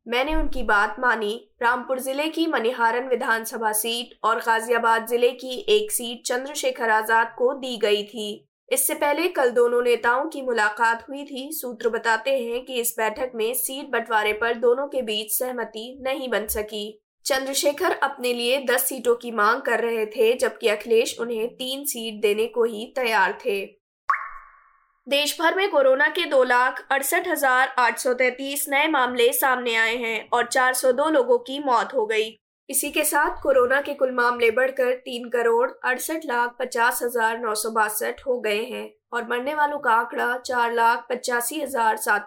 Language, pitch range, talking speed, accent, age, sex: Hindi, 230-275 Hz, 150 wpm, native, 20-39, female